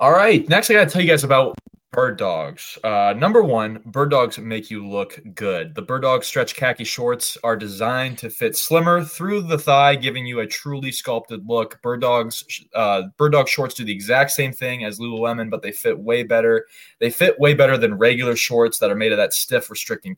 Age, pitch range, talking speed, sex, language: 20-39, 110-145 Hz, 215 wpm, male, English